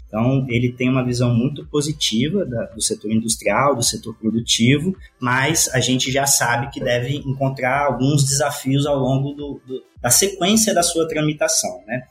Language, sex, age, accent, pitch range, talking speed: Portuguese, male, 20-39, Brazilian, 120-145 Hz, 155 wpm